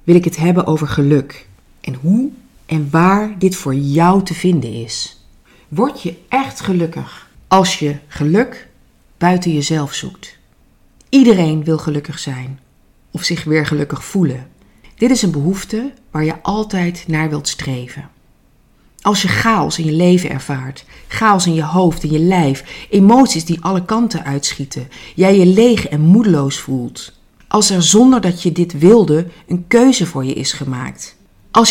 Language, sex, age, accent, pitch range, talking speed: Dutch, female, 40-59, Dutch, 150-195 Hz, 160 wpm